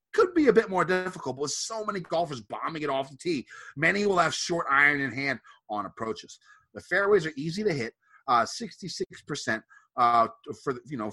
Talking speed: 195 wpm